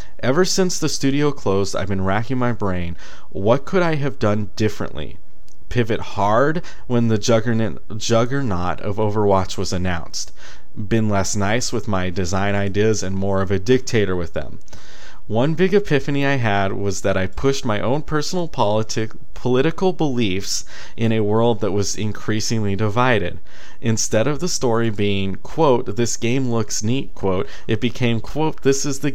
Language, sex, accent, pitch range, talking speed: English, male, American, 100-130 Hz, 160 wpm